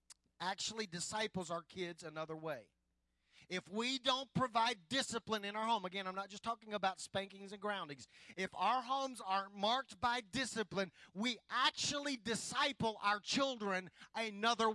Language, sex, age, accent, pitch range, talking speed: English, male, 40-59, American, 170-225 Hz, 145 wpm